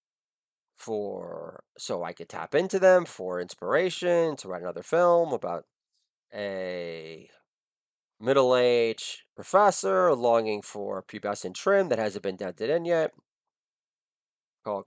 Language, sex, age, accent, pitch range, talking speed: English, male, 30-49, American, 110-180 Hz, 115 wpm